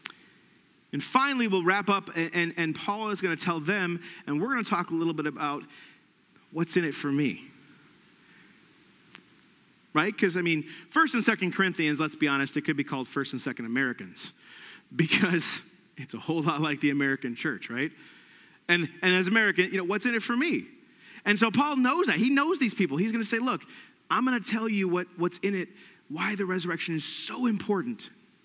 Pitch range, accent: 170-230 Hz, American